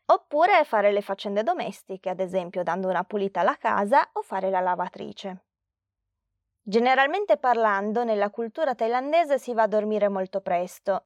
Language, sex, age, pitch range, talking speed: Italian, female, 20-39, 195-250 Hz, 145 wpm